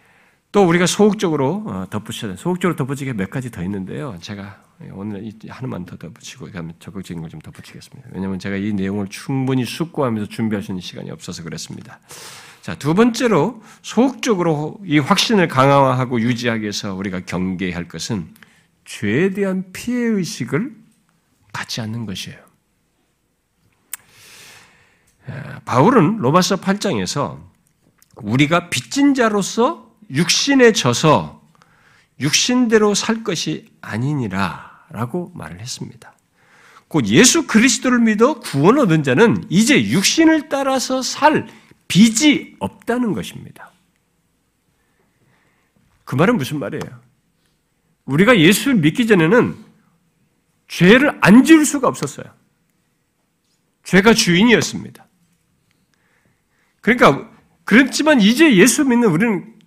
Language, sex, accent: Korean, male, native